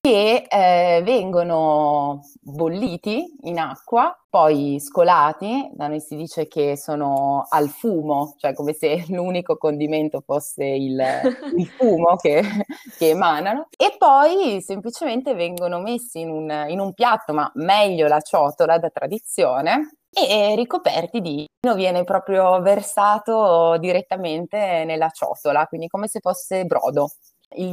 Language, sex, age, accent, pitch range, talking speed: Italian, female, 20-39, native, 150-195 Hz, 130 wpm